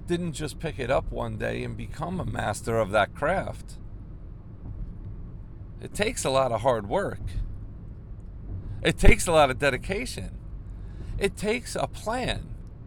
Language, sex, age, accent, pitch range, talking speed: English, male, 40-59, American, 100-145 Hz, 145 wpm